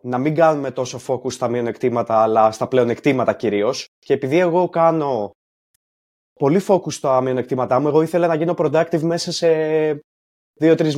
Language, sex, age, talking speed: Greek, male, 20-39, 155 wpm